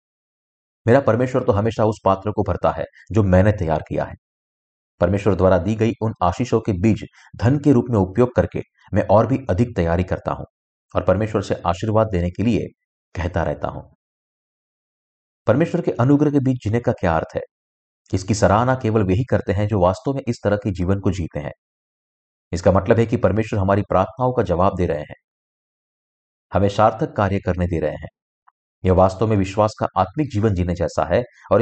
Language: Hindi